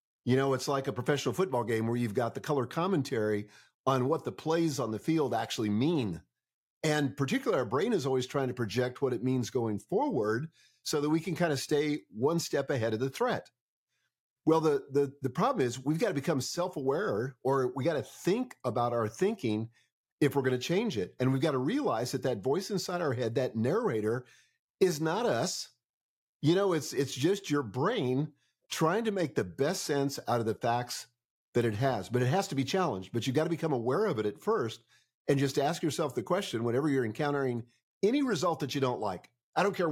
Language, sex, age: English, male, 50-69